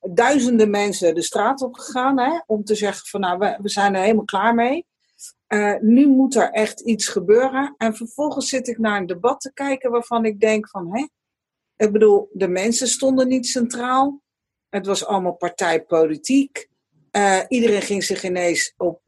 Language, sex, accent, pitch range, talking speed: Dutch, female, Dutch, 210-265 Hz, 180 wpm